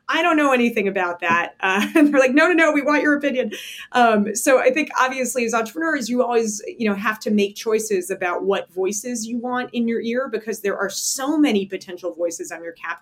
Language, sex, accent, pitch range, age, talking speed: English, female, American, 185-250 Hz, 30-49, 220 wpm